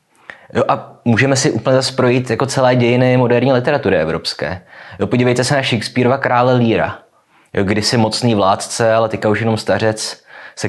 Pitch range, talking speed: 105-125 Hz, 155 wpm